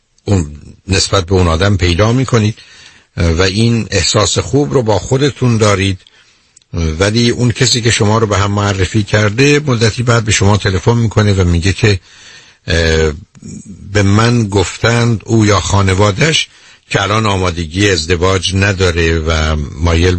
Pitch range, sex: 90-110 Hz, male